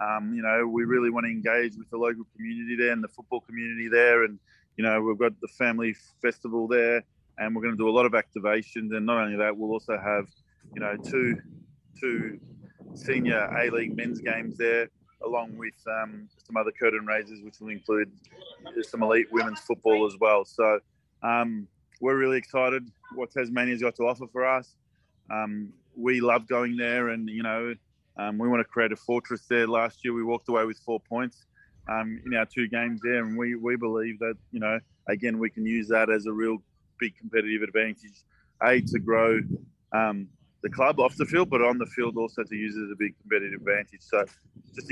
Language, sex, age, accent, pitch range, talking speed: English, male, 20-39, Australian, 110-125 Hz, 205 wpm